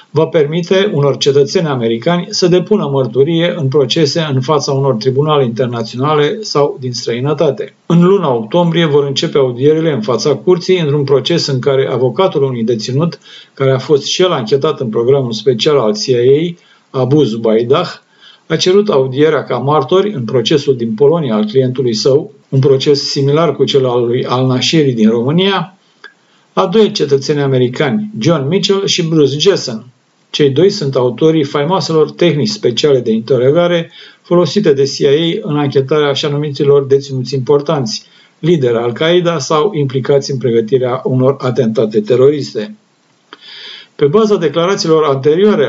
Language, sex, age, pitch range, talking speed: Romanian, male, 50-69, 135-180 Hz, 145 wpm